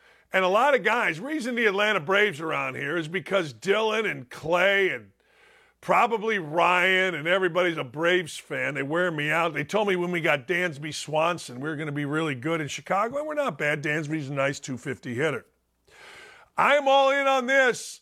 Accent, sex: American, male